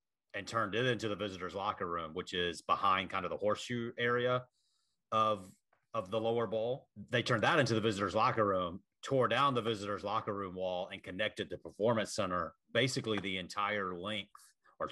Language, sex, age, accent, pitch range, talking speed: English, male, 30-49, American, 95-120 Hz, 185 wpm